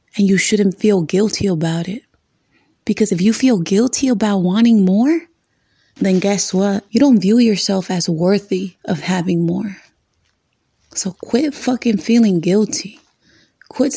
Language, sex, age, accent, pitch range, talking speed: English, female, 30-49, American, 185-225 Hz, 140 wpm